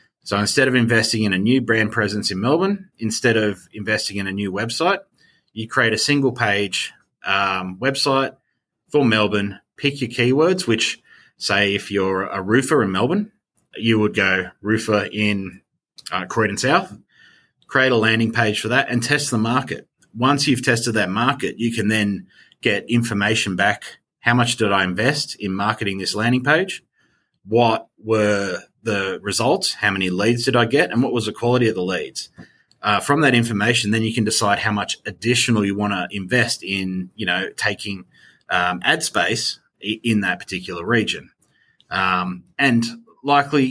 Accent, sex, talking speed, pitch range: Australian, male, 170 wpm, 105-130 Hz